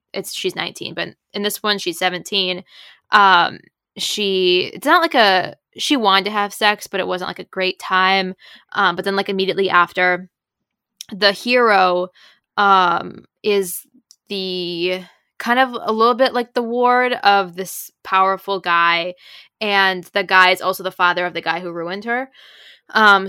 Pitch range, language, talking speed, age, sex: 180-205 Hz, English, 165 wpm, 10-29, female